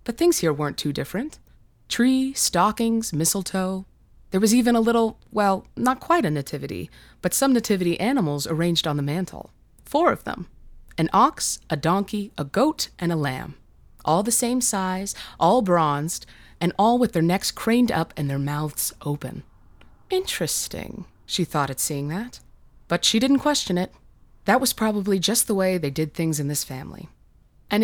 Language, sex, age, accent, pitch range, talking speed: English, female, 20-39, American, 155-220 Hz, 170 wpm